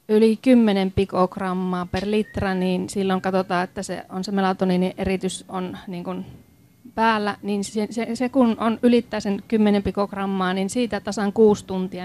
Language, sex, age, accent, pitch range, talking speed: Finnish, female, 30-49, native, 195-235 Hz, 155 wpm